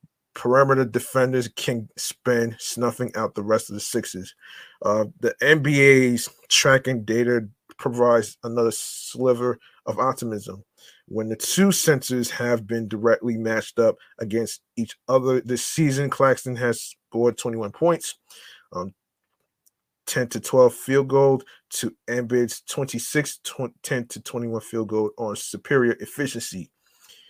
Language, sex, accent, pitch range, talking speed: English, male, American, 110-130 Hz, 125 wpm